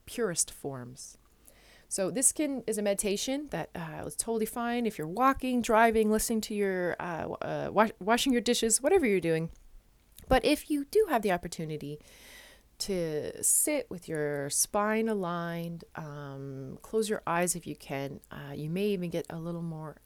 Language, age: English, 30-49